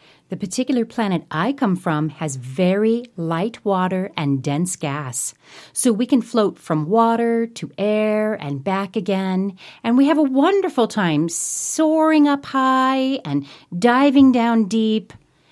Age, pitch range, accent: 40-59, 150-220 Hz, American